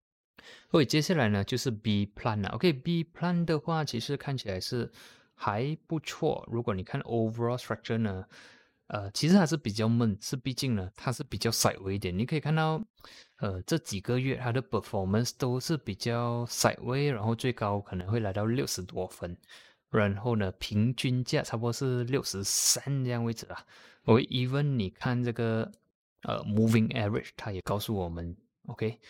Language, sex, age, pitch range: Chinese, male, 20-39, 100-125 Hz